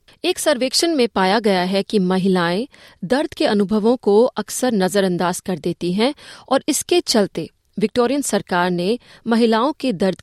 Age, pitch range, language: 30-49, 185-240 Hz, Hindi